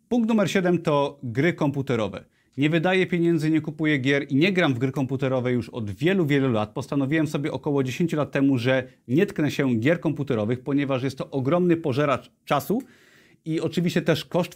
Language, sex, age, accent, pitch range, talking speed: Polish, male, 30-49, native, 125-155 Hz, 185 wpm